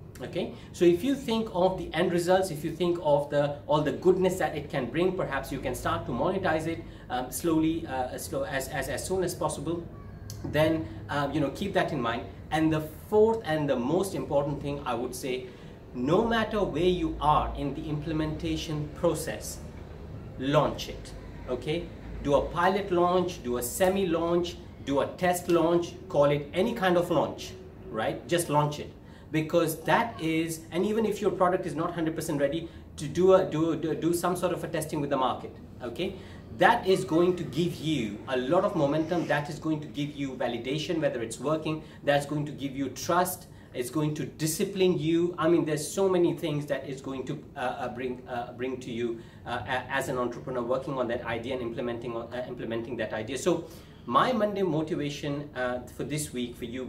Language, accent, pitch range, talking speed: English, Indian, 130-175 Hz, 200 wpm